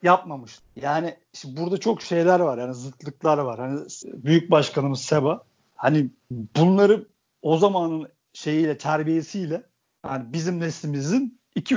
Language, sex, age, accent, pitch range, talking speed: Turkish, male, 50-69, native, 150-205 Hz, 120 wpm